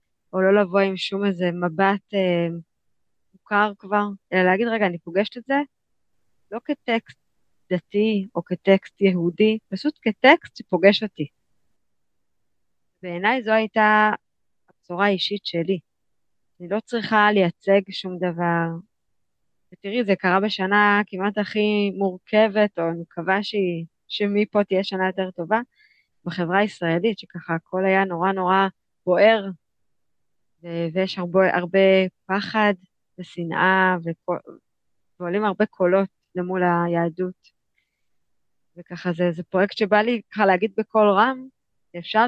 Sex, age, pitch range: female, 20-39, 175-210 Hz